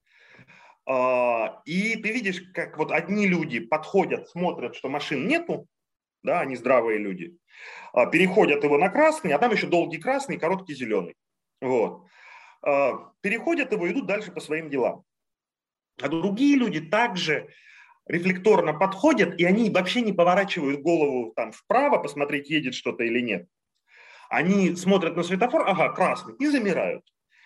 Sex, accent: male, native